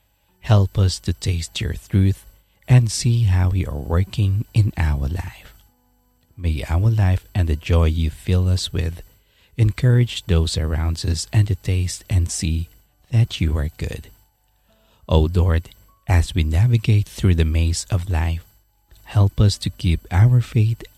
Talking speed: 155 wpm